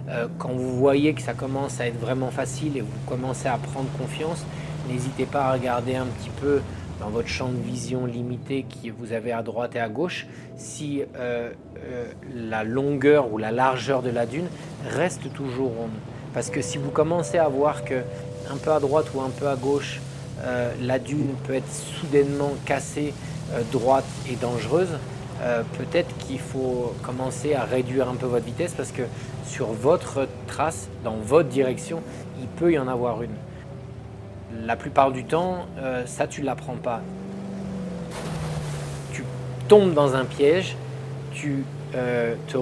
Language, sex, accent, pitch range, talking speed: French, male, French, 125-150 Hz, 170 wpm